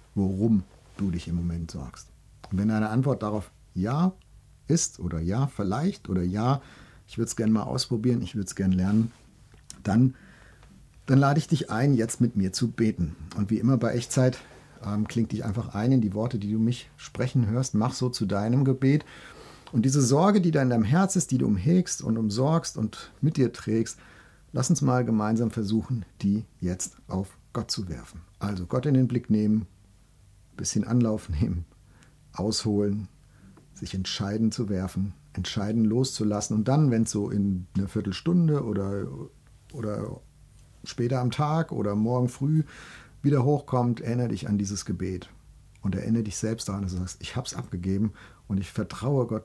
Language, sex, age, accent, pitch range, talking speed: German, male, 50-69, German, 100-125 Hz, 180 wpm